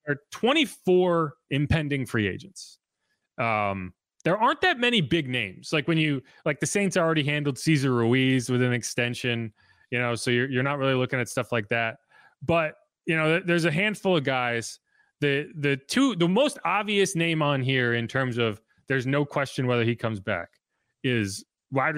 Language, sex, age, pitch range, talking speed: English, male, 30-49, 115-150 Hz, 180 wpm